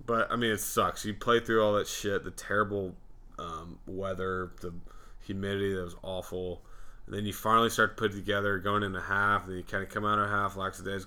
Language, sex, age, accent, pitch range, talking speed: English, male, 20-39, American, 95-110 Hz, 260 wpm